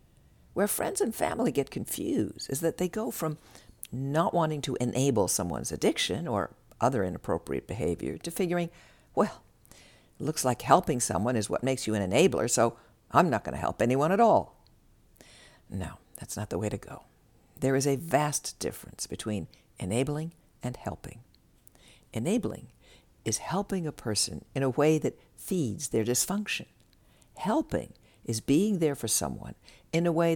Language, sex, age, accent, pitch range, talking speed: English, female, 60-79, American, 115-165 Hz, 160 wpm